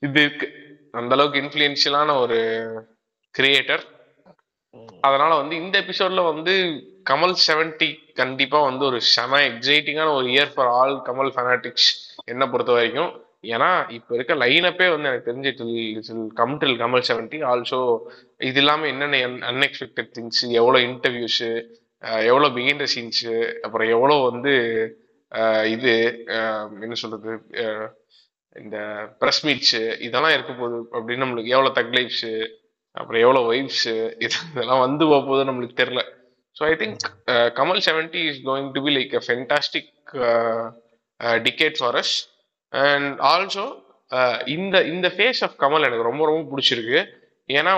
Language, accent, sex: Tamil, native, male